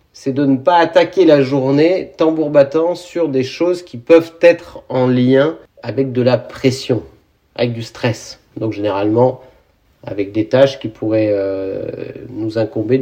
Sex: male